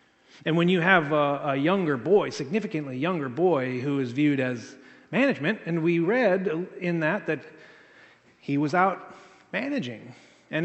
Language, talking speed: English, 145 wpm